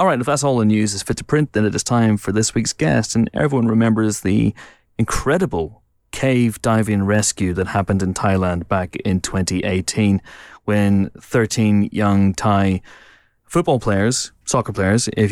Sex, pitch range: male, 95-115 Hz